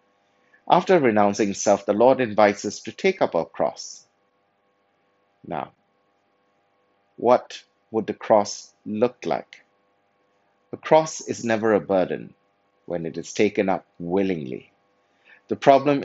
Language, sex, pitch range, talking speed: English, male, 100-110 Hz, 125 wpm